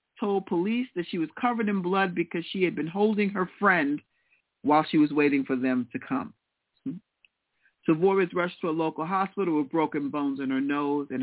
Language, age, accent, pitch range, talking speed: English, 50-69, American, 155-215 Hz, 200 wpm